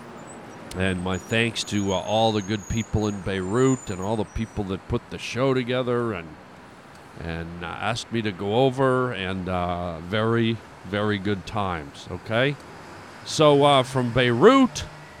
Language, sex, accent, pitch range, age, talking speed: English, male, American, 115-165 Hz, 40-59, 155 wpm